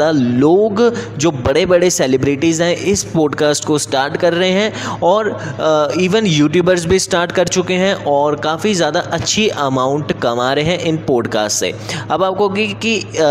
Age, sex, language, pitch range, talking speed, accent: 10-29, male, Hindi, 145-180 Hz, 160 wpm, native